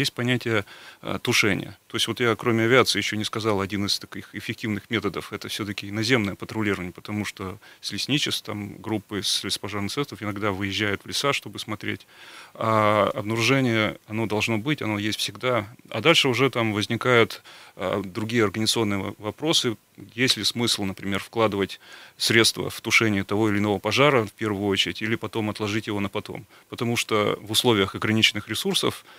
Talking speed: 165 wpm